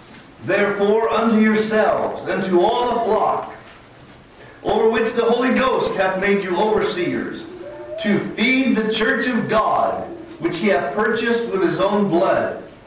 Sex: male